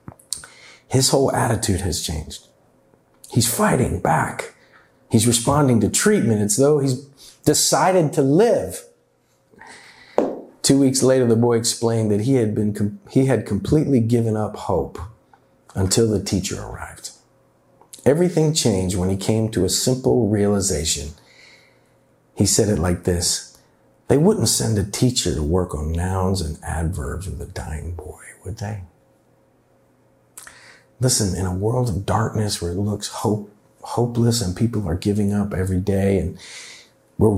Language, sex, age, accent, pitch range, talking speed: English, male, 50-69, American, 90-120 Hz, 145 wpm